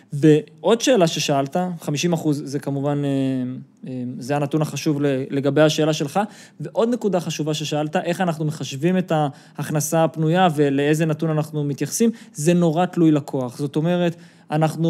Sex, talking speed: male, 135 wpm